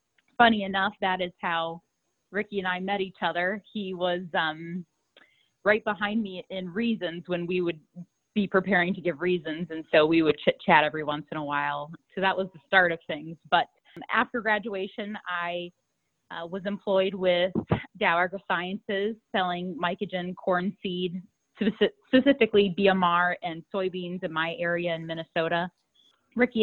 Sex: female